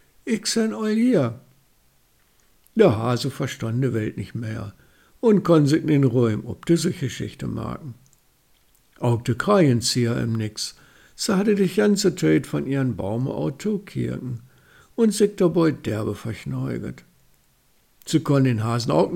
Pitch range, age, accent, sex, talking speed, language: 120-170 Hz, 60-79, German, male, 145 wpm, German